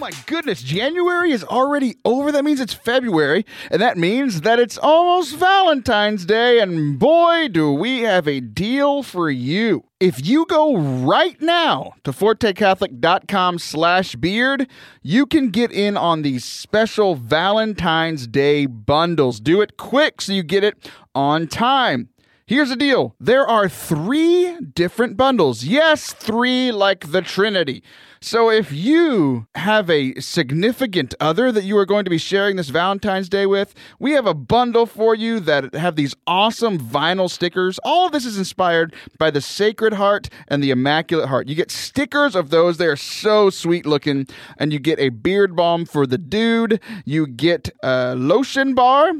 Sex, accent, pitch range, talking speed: male, American, 160-250 Hz, 165 wpm